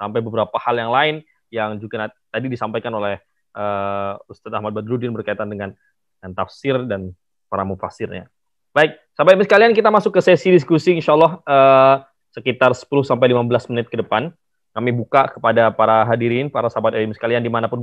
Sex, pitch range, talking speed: male, 120-155 Hz, 160 wpm